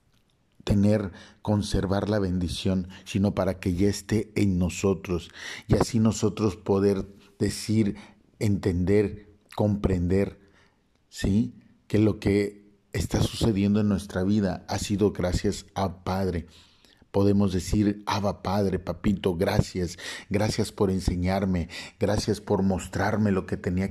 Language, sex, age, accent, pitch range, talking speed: Spanish, male, 50-69, Mexican, 95-110 Hz, 120 wpm